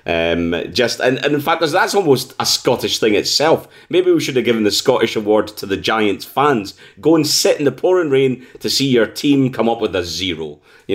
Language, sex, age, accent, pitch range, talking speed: English, male, 30-49, British, 100-130 Hz, 225 wpm